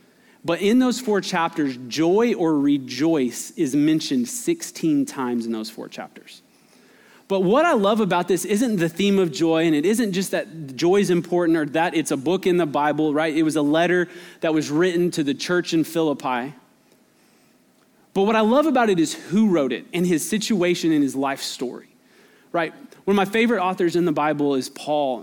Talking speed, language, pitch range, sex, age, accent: 200 wpm, English, 160-205 Hz, male, 20-39, American